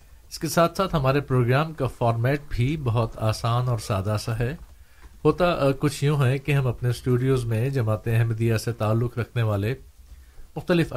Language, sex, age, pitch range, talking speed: Urdu, male, 50-69, 105-130 Hz, 170 wpm